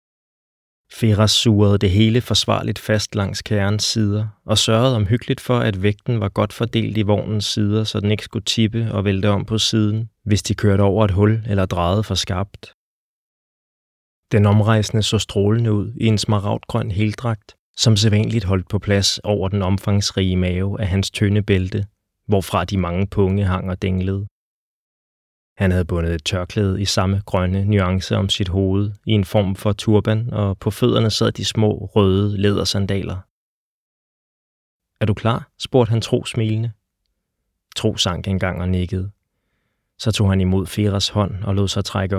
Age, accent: 20-39, native